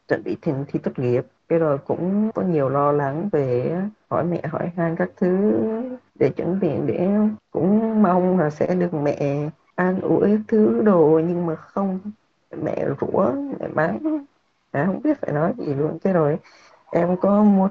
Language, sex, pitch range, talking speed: Vietnamese, female, 150-190 Hz, 185 wpm